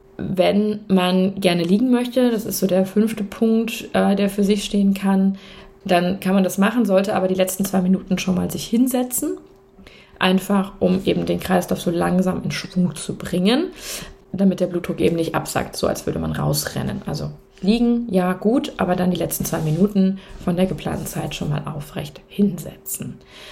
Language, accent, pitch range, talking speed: German, German, 175-200 Hz, 180 wpm